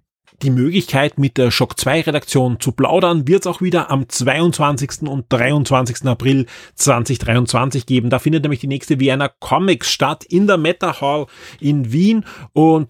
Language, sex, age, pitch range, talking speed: German, male, 30-49, 130-160 Hz, 160 wpm